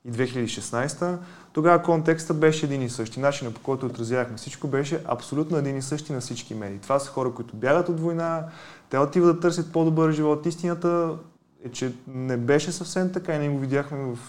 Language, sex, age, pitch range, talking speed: Bulgarian, male, 20-39, 120-160 Hz, 195 wpm